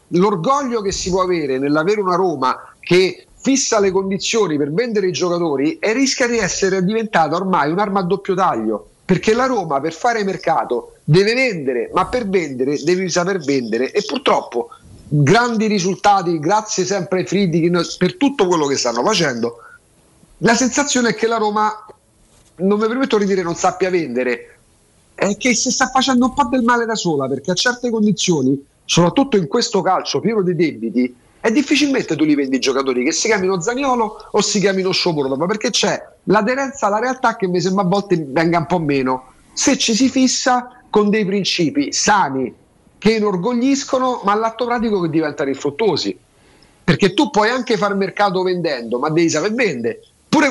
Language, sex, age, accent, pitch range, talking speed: Italian, male, 50-69, native, 170-230 Hz, 175 wpm